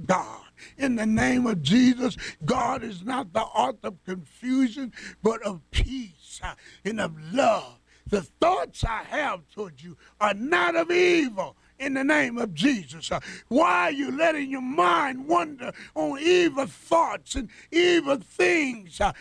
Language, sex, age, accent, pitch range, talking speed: English, male, 60-79, American, 235-315 Hz, 145 wpm